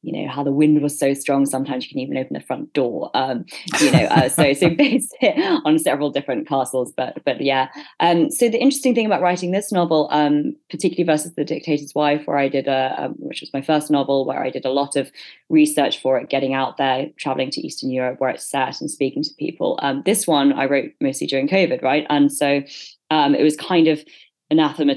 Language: English